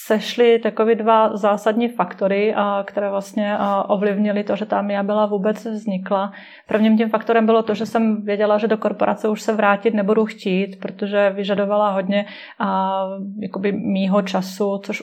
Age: 30-49